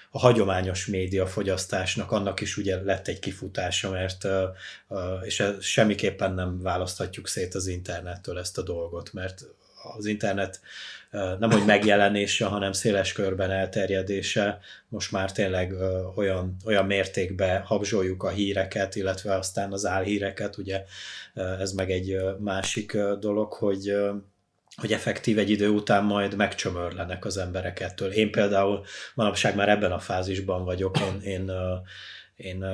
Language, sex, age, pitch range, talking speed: Hungarian, male, 20-39, 95-105 Hz, 125 wpm